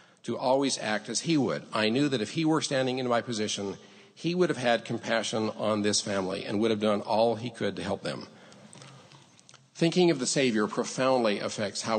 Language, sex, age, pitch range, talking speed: English, male, 50-69, 110-140 Hz, 205 wpm